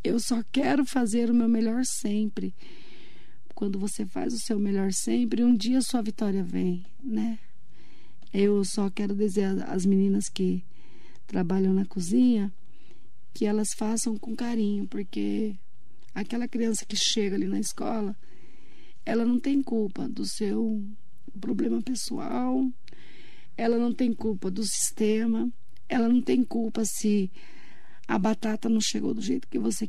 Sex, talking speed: female, 145 wpm